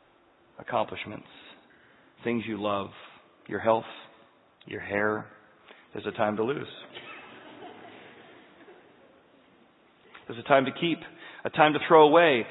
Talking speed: 110 wpm